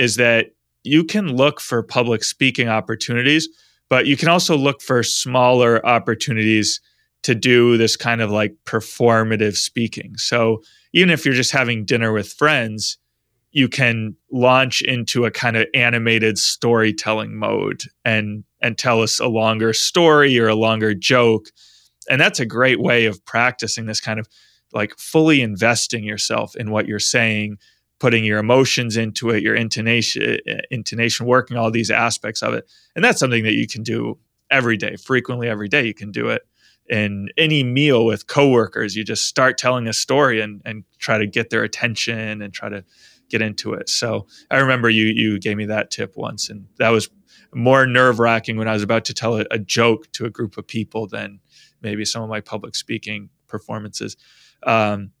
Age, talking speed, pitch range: 20-39, 180 wpm, 110-125 Hz